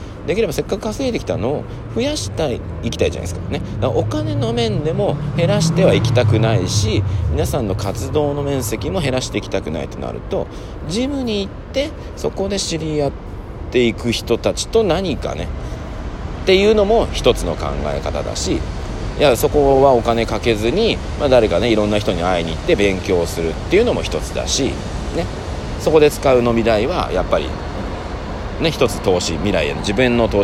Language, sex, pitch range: Japanese, male, 90-140 Hz